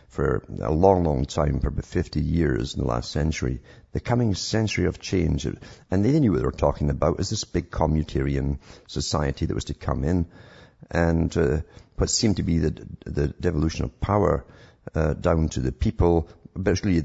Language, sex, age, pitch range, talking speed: English, male, 50-69, 75-90 Hz, 185 wpm